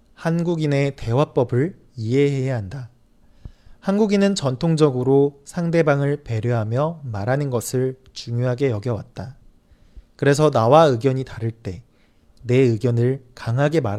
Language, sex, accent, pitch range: Chinese, male, Korean, 115-150 Hz